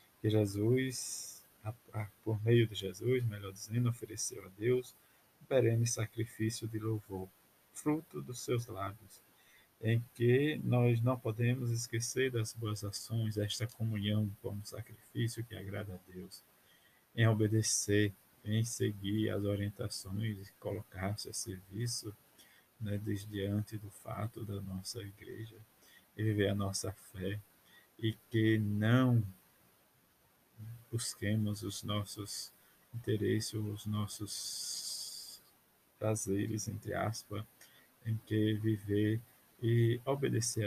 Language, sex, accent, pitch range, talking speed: Portuguese, male, Brazilian, 100-115 Hz, 115 wpm